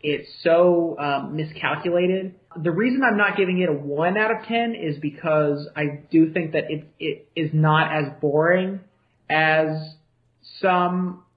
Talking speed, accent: 155 wpm, American